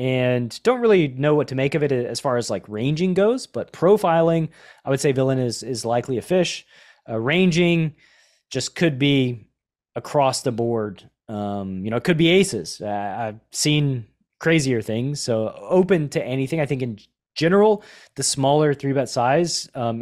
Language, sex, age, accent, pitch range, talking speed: English, male, 20-39, American, 120-165 Hz, 180 wpm